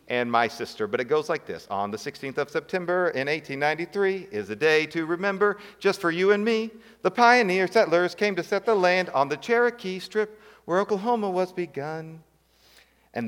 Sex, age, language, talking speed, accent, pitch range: male, 40-59, English, 190 wpm, American, 135-180 Hz